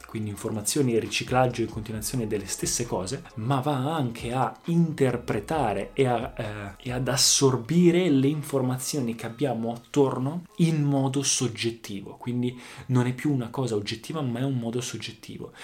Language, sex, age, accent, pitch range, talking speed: Italian, male, 20-39, native, 115-140 Hz, 145 wpm